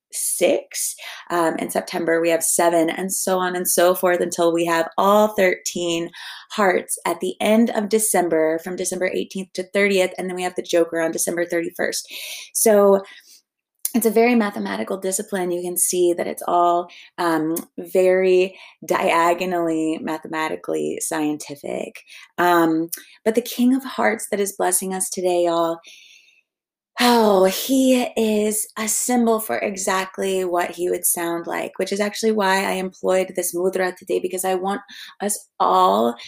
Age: 20-39